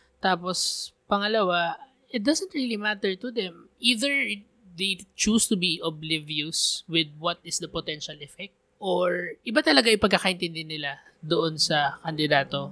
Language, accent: English, Filipino